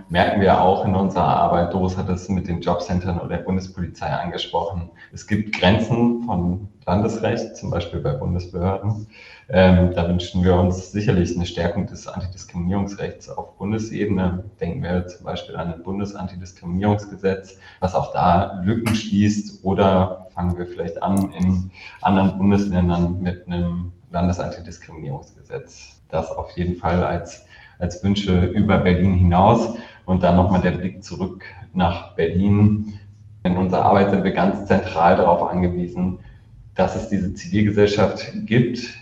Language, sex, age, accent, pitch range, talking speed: German, male, 30-49, German, 90-105 Hz, 140 wpm